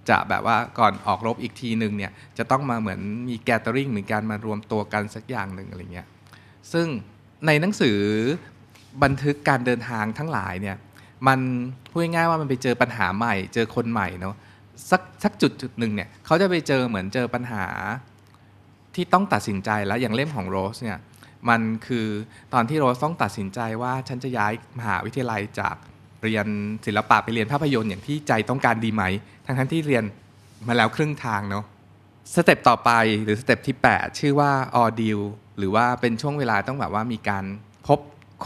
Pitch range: 105-130 Hz